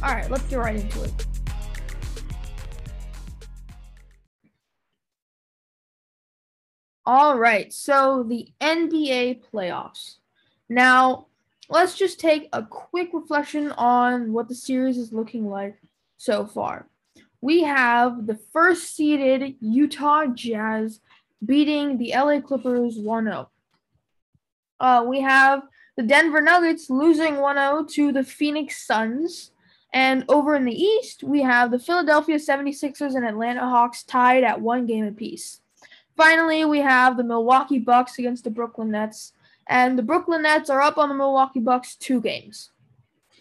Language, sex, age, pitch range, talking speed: English, female, 10-29, 245-300 Hz, 125 wpm